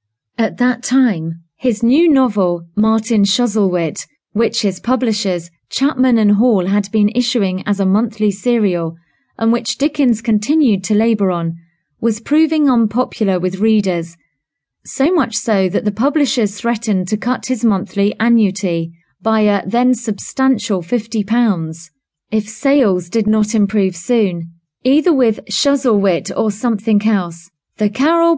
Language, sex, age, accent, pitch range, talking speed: English, female, 30-49, British, 185-240 Hz, 135 wpm